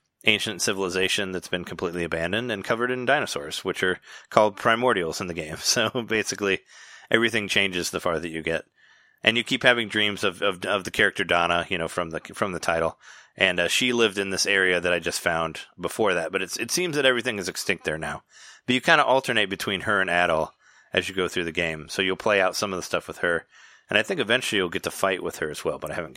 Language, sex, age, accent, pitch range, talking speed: English, male, 30-49, American, 95-125 Hz, 245 wpm